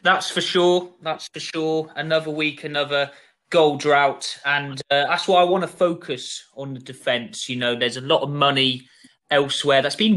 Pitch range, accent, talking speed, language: 130-180 Hz, British, 190 wpm, English